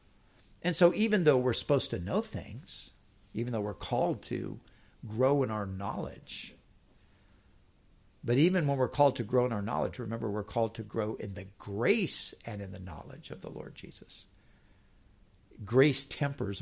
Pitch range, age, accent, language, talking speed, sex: 100-130 Hz, 60-79, American, Dutch, 165 wpm, male